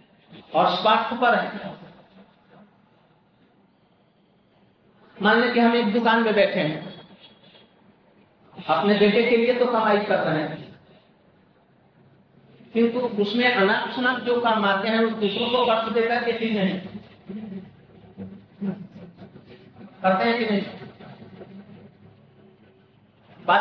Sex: male